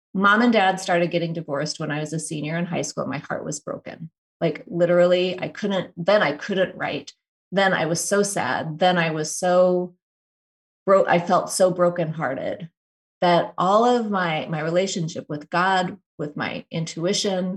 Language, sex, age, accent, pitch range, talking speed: English, female, 30-49, American, 155-185 Hz, 175 wpm